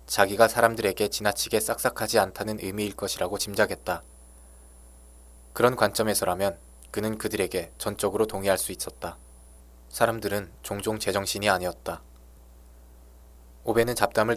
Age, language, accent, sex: 20-39, Korean, native, male